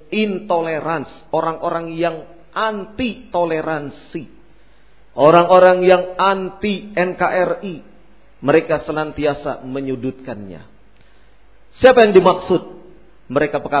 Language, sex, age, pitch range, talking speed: Indonesian, male, 50-69, 130-185 Hz, 70 wpm